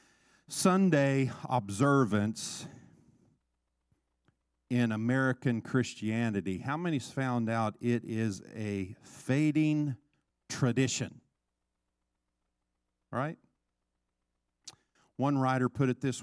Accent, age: American, 50-69